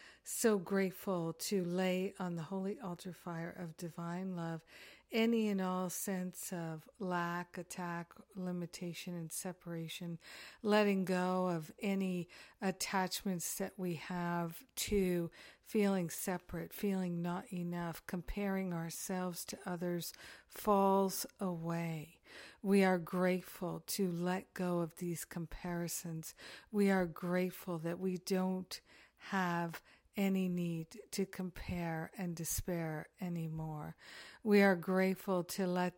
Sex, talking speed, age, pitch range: female, 115 wpm, 50-69, 170-195 Hz